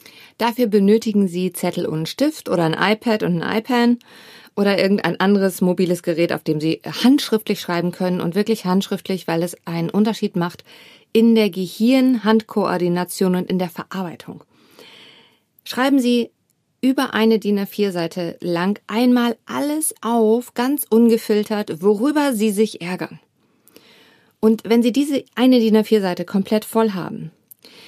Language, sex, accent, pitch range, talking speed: German, female, German, 185-230 Hz, 135 wpm